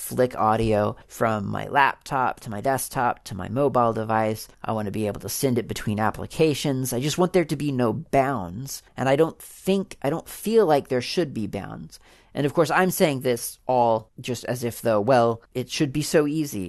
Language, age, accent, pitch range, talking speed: English, 40-59, American, 115-140 Hz, 210 wpm